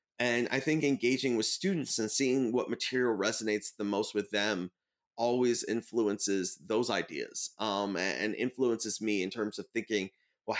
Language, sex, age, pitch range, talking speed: English, male, 30-49, 105-145 Hz, 160 wpm